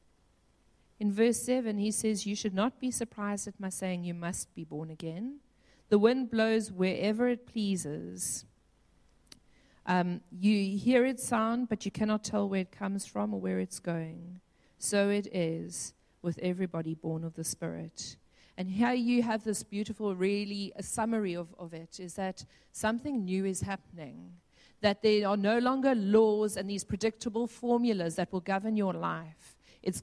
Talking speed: 170 wpm